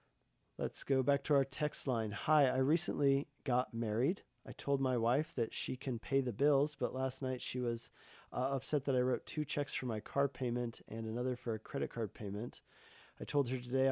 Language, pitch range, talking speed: English, 120-145 Hz, 210 wpm